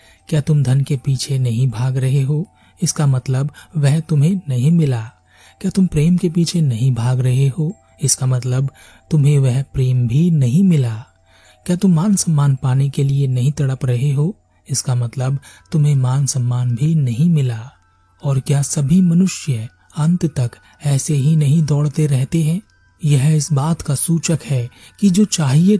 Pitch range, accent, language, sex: 130-155 Hz, native, Hindi, male